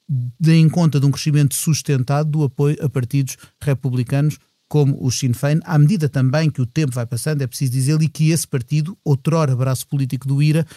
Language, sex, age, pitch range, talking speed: Portuguese, male, 30-49, 140-175 Hz, 195 wpm